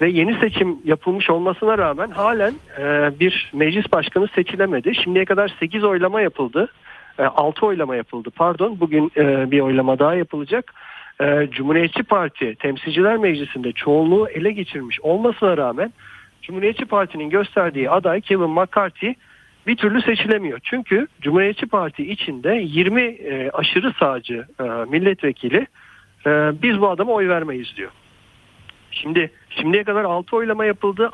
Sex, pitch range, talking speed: male, 145-200 Hz, 135 wpm